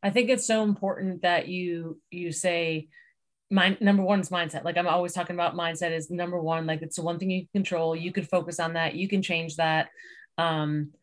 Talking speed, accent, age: 220 wpm, American, 30-49